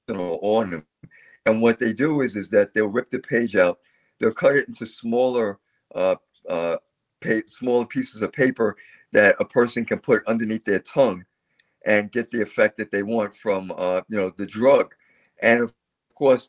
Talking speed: 180 wpm